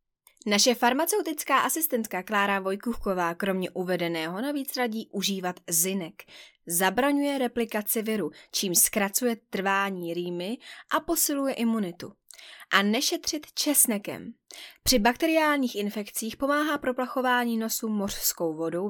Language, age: Czech, 20-39